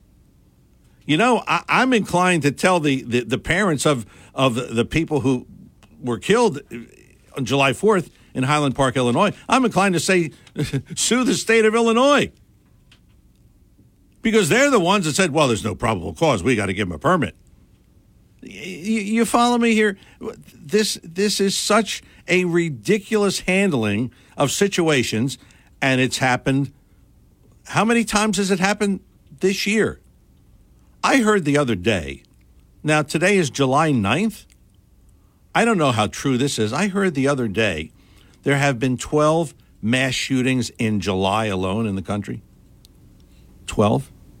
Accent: American